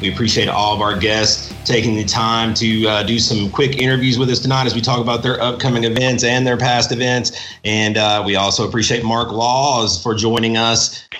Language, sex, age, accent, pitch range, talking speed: English, male, 30-49, American, 110-130 Hz, 210 wpm